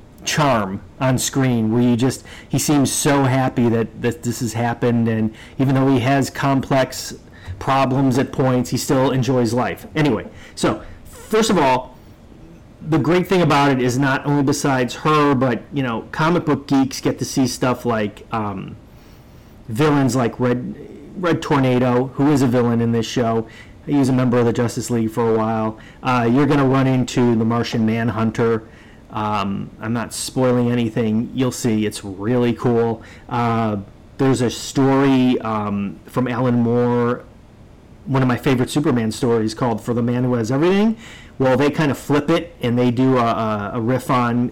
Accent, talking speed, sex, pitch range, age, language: American, 180 wpm, male, 115-135 Hz, 40-59, English